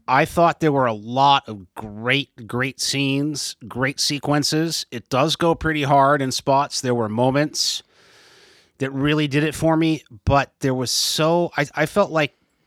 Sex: male